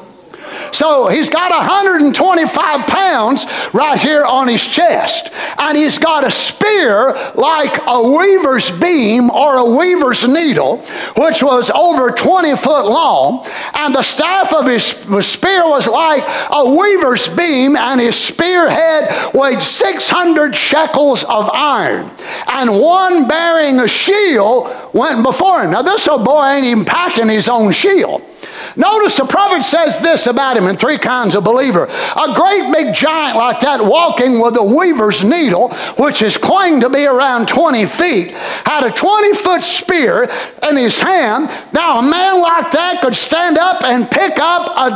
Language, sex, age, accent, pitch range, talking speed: English, male, 50-69, American, 255-345 Hz, 155 wpm